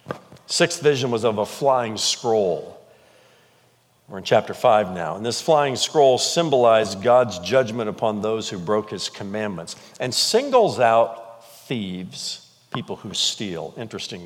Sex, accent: male, American